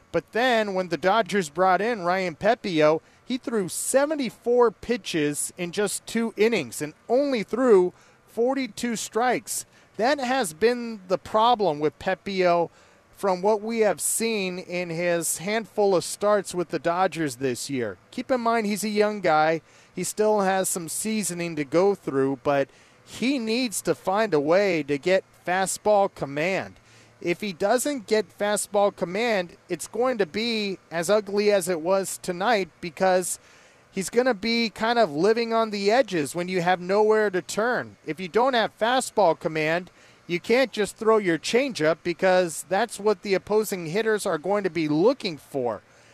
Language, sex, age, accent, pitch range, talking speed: English, male, 30-49, American, 170-220 Hz, 165 wpm